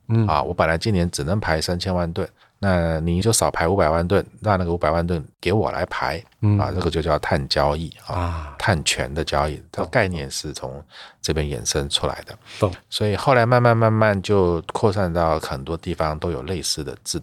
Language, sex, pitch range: Chinese, male, 85-110 Hz